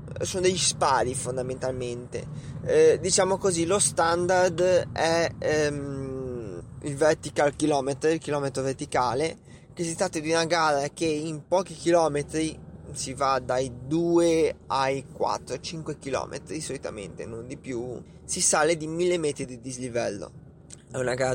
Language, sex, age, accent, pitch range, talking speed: Italian, male, 20-39, native, 125-155 Hz, 140 wpm